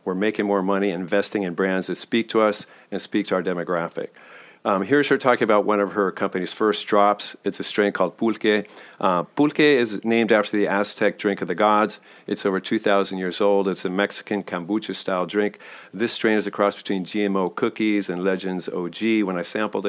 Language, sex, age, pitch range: English, male, 40-59, 95-105 Hz